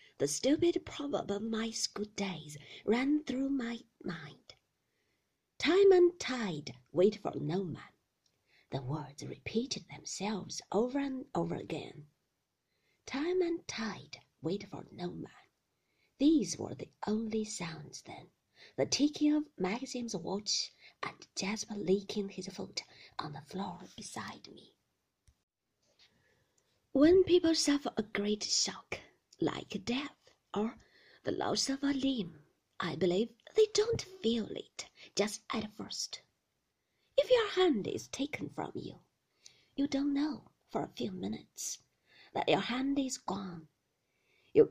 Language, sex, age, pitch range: Chinese, female, 50-69, 195-280 Hz